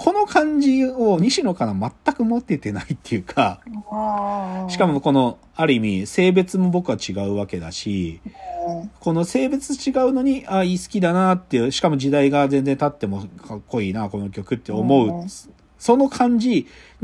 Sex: male